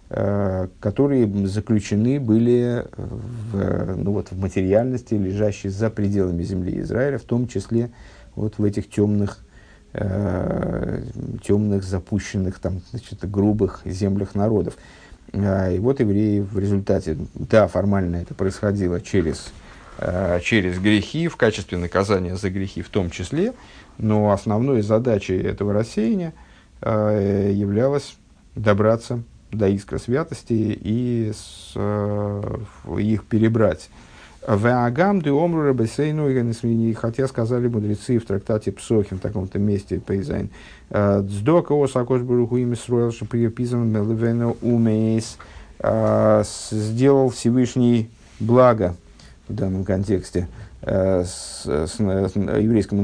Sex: male